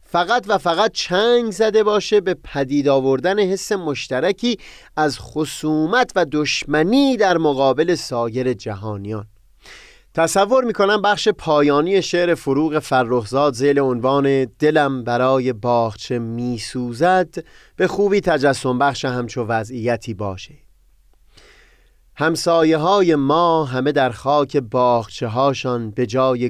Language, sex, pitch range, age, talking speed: Persian, male, 120-155 Hz, 30-49, 110 wpm